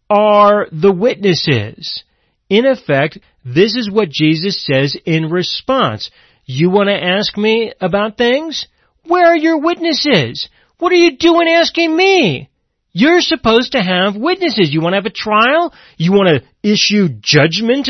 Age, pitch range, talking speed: 40-59, 165-265 Hz, 150 wpm